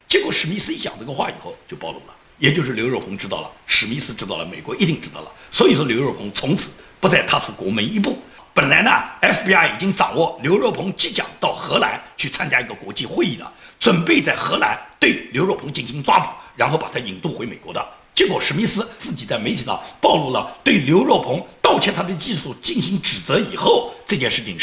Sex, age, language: male, 50-69, Chinese